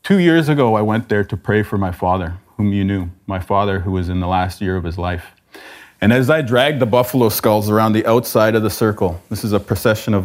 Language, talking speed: English, 250 wpm